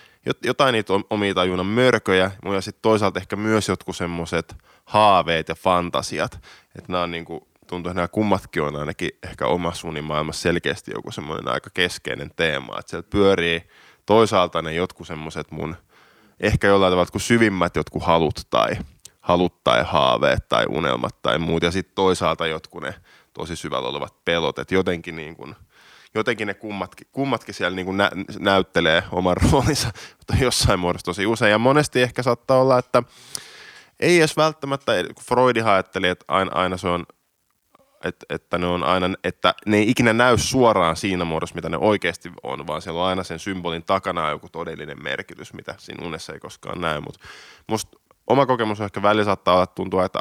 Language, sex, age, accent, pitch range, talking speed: Finnish, male, 10-29, native, 85-105 Hz, 165 wpm